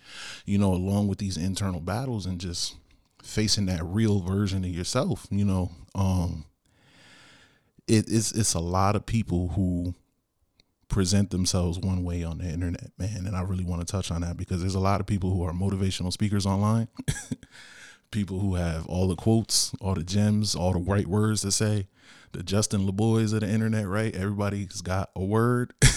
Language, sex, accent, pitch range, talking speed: English, male, American, 90-105 Hz, 185 wpm